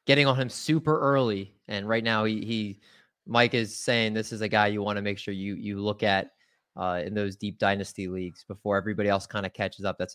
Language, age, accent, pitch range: English, 20-39, American, 105-125 Hz